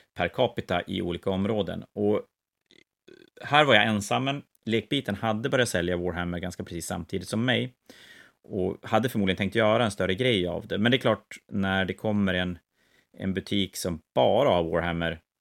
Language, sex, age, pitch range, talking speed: Swedish, male, 30-49, 90-110 Hz, 175 wpm